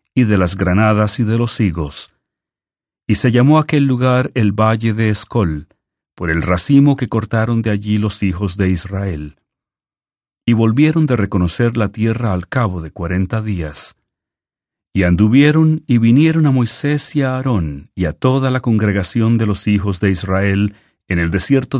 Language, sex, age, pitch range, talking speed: English, male, 40-59, 95-130 Hz, 170 wpm